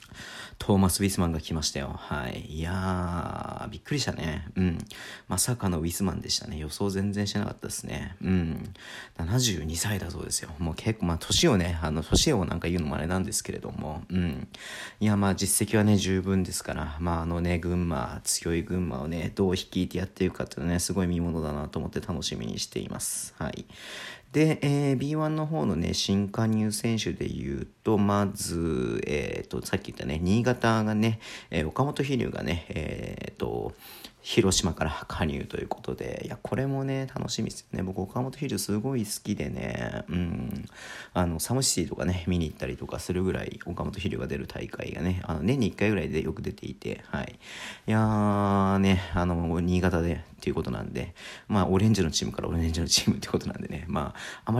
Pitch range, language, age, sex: 85-105 Hz, Japanese, 40-59, male